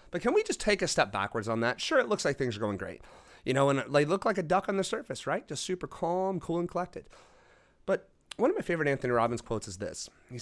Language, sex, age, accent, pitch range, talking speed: English, male, 30-49, American, 120-180 Hz, 270 wpm